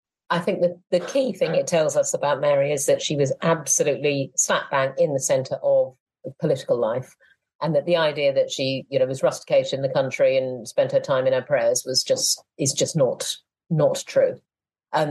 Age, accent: 40-59, British